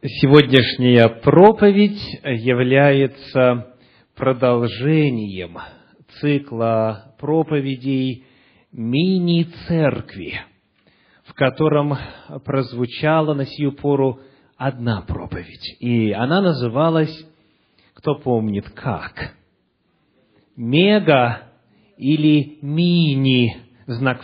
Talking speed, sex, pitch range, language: 60 wpm, male, 125-165 Hz, English